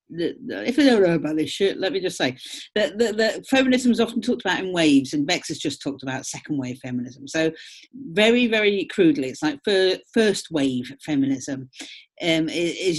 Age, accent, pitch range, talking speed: 50-69, British, 160-240 Hz, 195 wpm